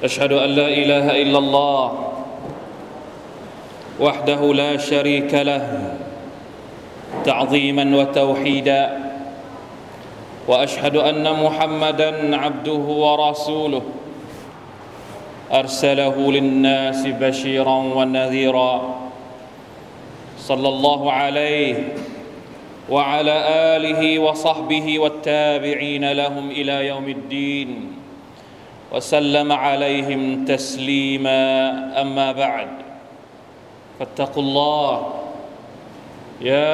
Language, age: Thai, 30-49